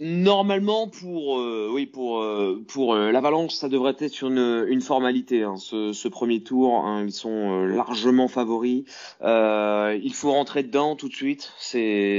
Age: 20-39